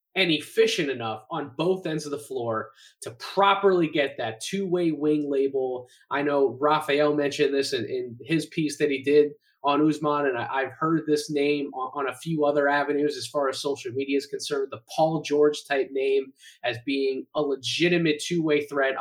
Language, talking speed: English, 185 wpm